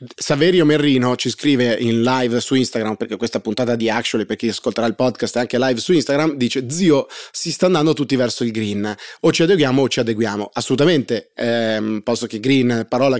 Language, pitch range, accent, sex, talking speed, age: Italian, 115-130 Hz, native, male, 200 wpm, 30-49